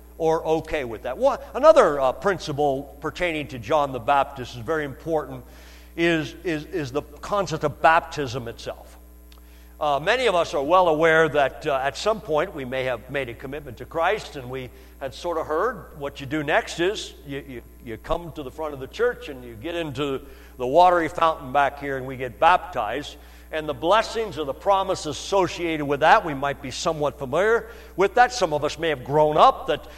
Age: 60-79